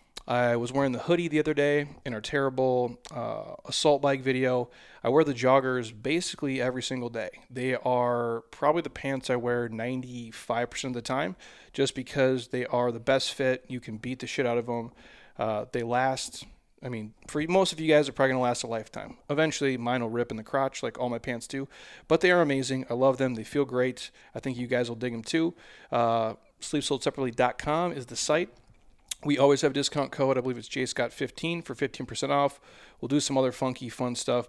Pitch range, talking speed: 120-140 Hz, 210 wpm